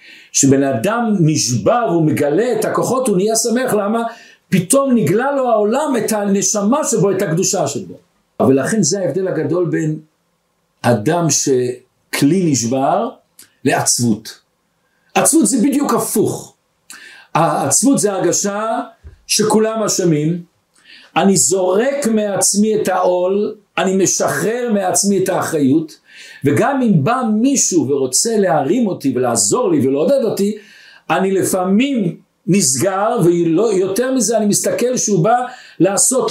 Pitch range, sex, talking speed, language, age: 170-225 Hz, male, 115 wpm, Hebrew, 60-79